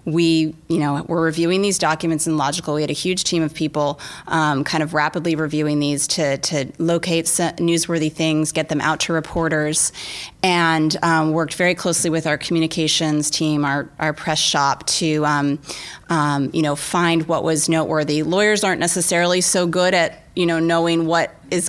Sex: female